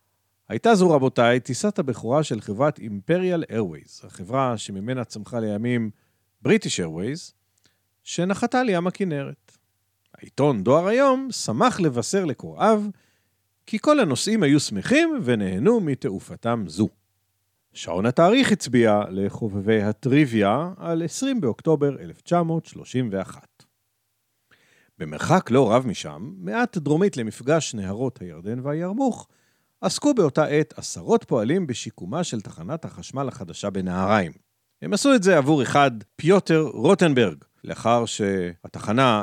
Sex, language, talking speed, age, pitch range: male, Hebrew, 110 wpm, 50-69, 105-175 Hz